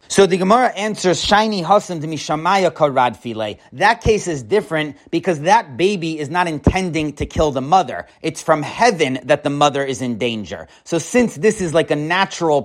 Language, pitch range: English, 150-185 Hz